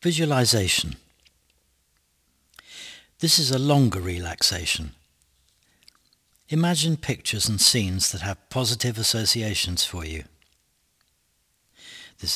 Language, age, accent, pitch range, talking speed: English, 60-79, British, 95-130 Hz, 85 wpm